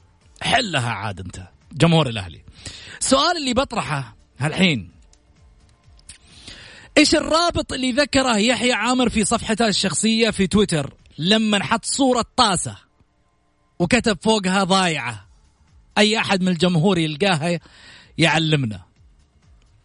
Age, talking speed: 40-59, 100 wpm